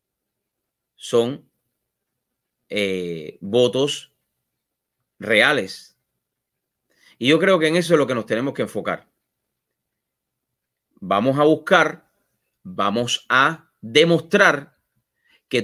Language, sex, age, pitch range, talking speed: English, male, 30-49, 115-165 Hz, 90 wpm